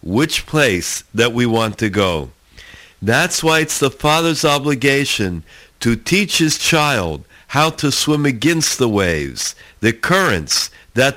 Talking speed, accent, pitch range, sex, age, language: 140 wpm, American, 100-150 Hz, male, 50-69, English